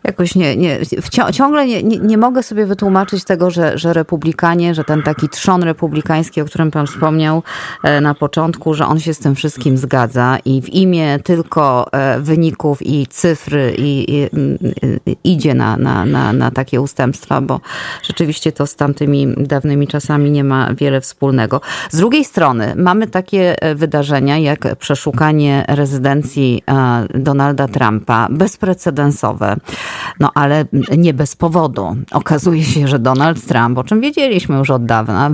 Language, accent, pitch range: Polish, native, 135-165 Hz